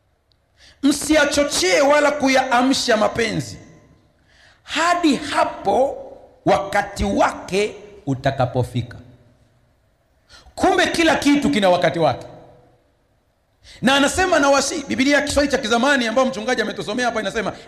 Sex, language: male, Swahili